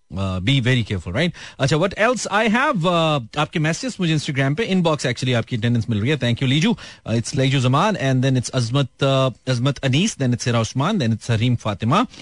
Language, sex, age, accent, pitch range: Hindi, male, 30-49, native, 120-185 Hz